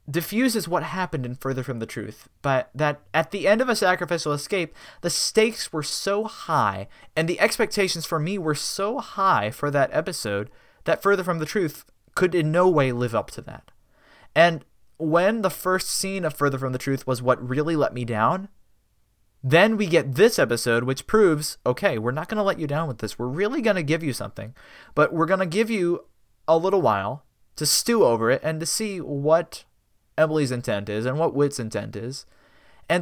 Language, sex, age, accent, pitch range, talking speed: English, male, 20-39, American, 120-175 Hz, 205 wpm